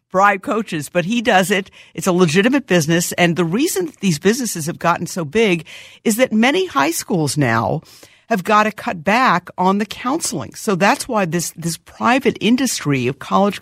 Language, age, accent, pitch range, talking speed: English, 50-69, American, 155-205 Hz, 185 wpm